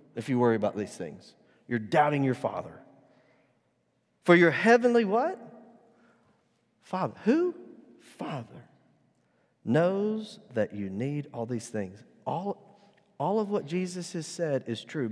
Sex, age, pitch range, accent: male, 40-59, 95-150 Hz, American